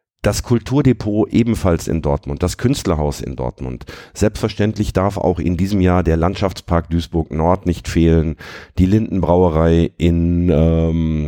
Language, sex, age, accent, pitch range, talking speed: German, male, 50-69, German, 80-100 Hz, 135 wpm